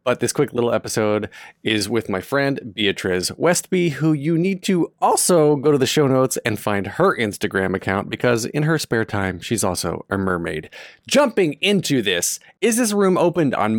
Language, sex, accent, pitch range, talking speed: English, male, American, 110-155 Hz, 185 wpm